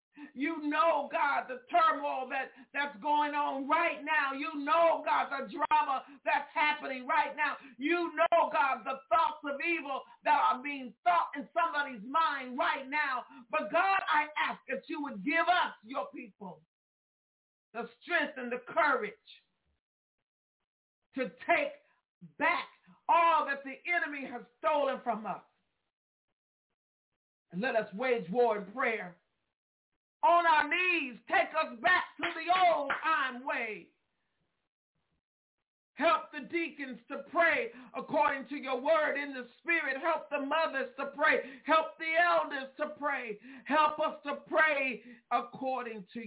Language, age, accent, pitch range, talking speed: English, 50-69, American, 245-315 Hz, 140 wpm